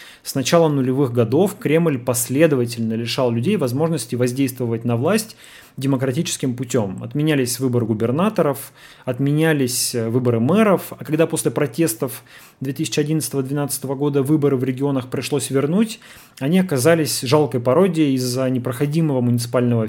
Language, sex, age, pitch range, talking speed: Russian, male, 30-49, 125-165 Hz, 115 wpm